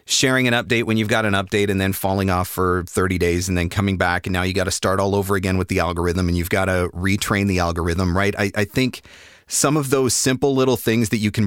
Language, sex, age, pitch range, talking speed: English, male, 30-49, 90-110 Hz, 265 wpm